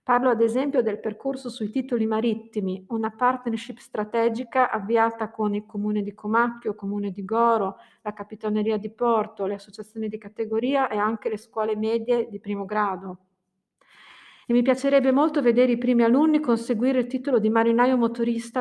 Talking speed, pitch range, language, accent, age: 165 wpm, 215-245 Hz, Italian, native, 40-59